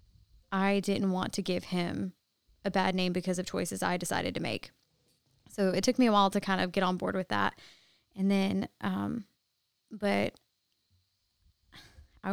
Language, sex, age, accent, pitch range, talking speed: English, female, 20-39, American, 190-210 Hz, 170 wpm